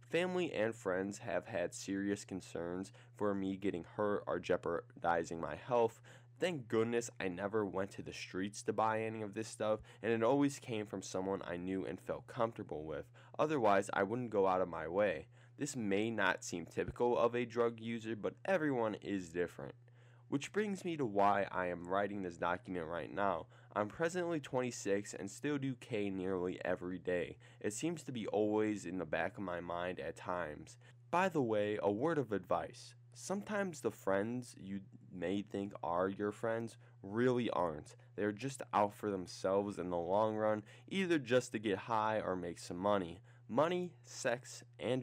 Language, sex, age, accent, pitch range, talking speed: English, male, 10-29, American, 100-120 Hz, 180 wpm